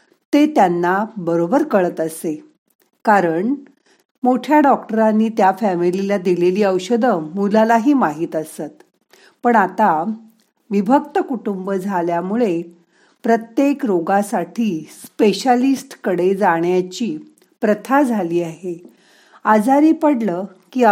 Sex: female